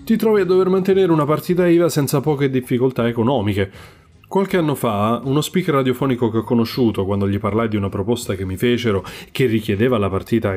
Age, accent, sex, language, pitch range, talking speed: 30-49, native, male, Italian, 105-140 Hz, 195 wpm